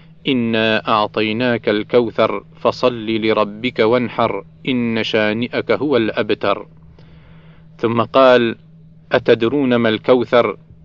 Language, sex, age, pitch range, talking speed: Arabic, male, 40-59, 115-140 Hz, 85 wpm